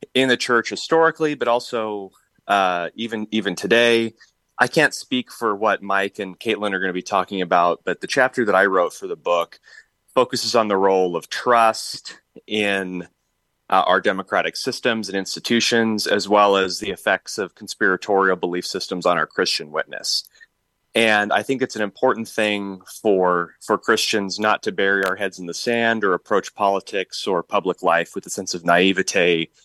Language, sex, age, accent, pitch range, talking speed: English, male, 30-49, American, 95-115 Hz, 180 wpm